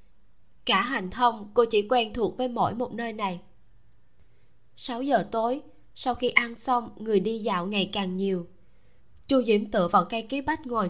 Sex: female